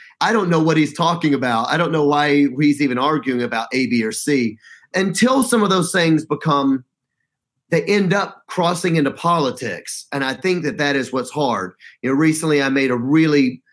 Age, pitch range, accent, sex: 30-49, 140-180 Hz, American, male